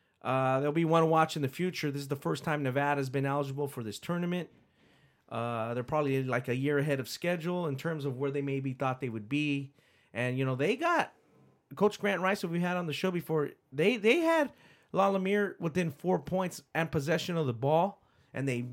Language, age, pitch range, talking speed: English, 30-49, 135-165 Hz, 225 wpm